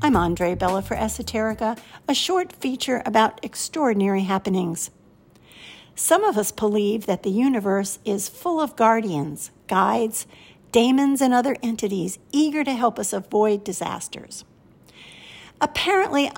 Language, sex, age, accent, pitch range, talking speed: English, female, 60-79, American, 200-265 Hz, 125 wpm